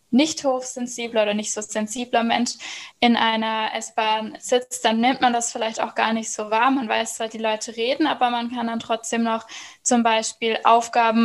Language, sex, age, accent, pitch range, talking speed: German, female, 10-29, German, 230-255 Hz, 190 wpm